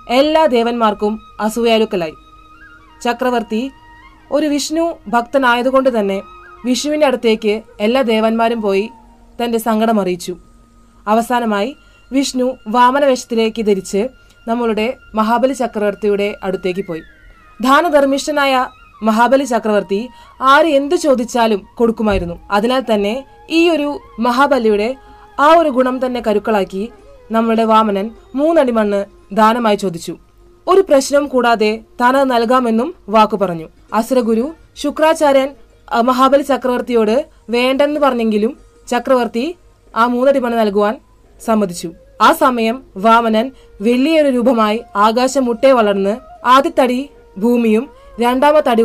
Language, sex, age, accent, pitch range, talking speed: Tamil, female, 20-39, native, 215-265 Hz, 85 wpm